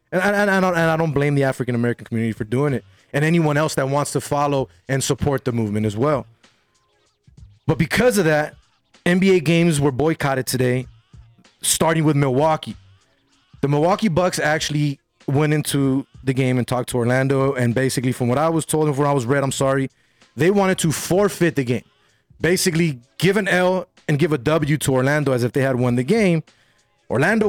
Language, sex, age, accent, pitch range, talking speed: English, male, 20-39, American, 125-155 Hz, 190 wpm